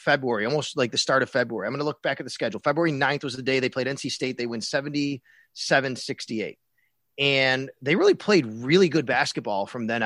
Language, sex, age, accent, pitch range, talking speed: English, male, 30-49, American, 135-180 Hz, 215 wpm